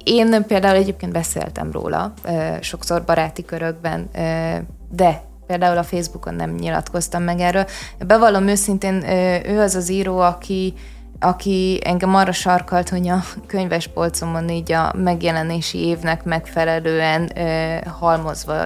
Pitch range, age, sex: 165-195 Hz, 20-39, female